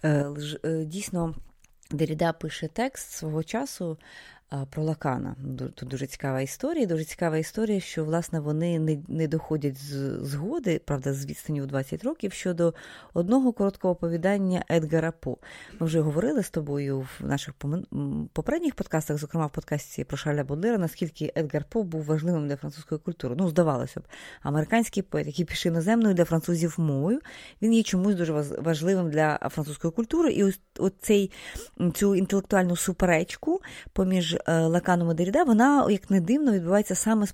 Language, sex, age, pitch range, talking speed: Ukrainian, female, 20-39, 150-195 Hz, 150 wpm